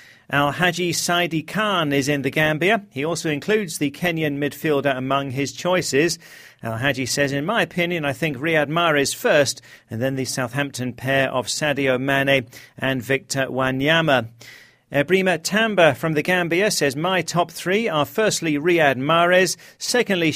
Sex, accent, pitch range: male, British, 135-175 Hz